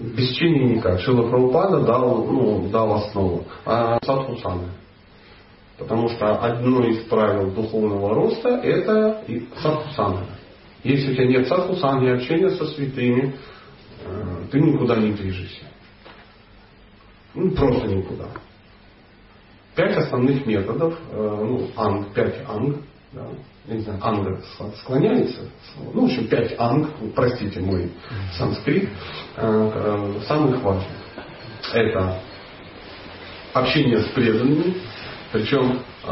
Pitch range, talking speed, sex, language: 100-135 Hz, 100 wpm, male, Russian